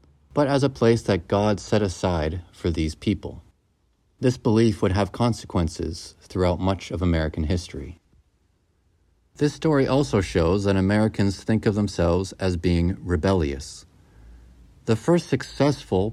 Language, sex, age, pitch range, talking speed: English, male, 40-59, 85-115 Hz, 135 wpm